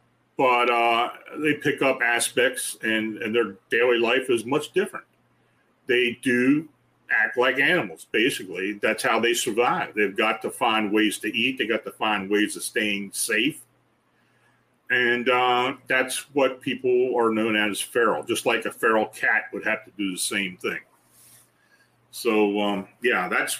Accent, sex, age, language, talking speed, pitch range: American, male, 40-59, English, 165 wpm, 110-140 Hz